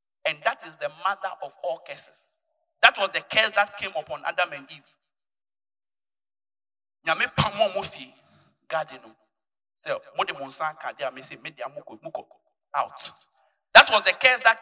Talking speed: 95 wpm